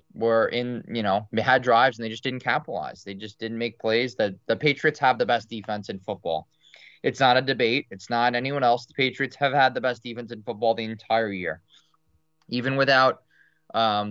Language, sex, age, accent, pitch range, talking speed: English, male, 20-39, American, 110-135 Hz, 205 wpm